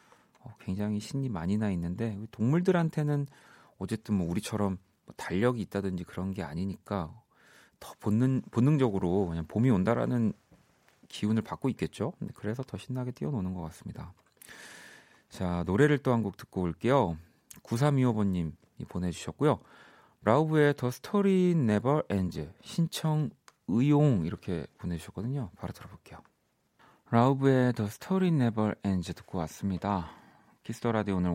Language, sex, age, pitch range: Korean, male, 40-59, 90-125 Hz